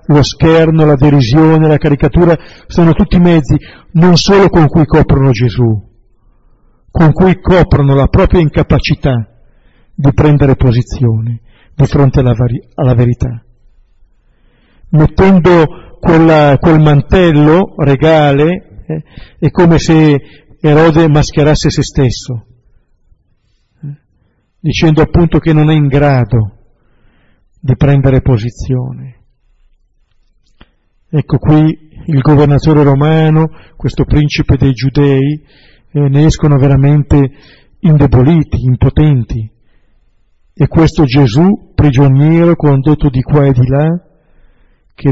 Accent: native